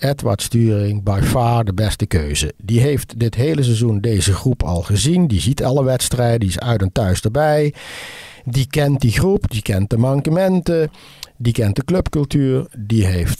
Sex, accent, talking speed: male, Dutch, 180 wpm